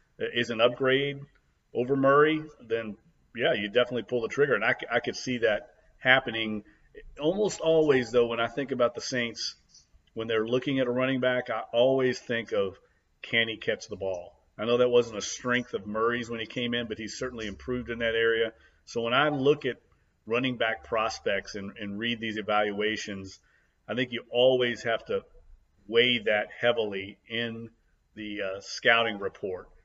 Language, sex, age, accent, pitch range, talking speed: English, male, 40-59, American, 105-125 Hz, 180 wpm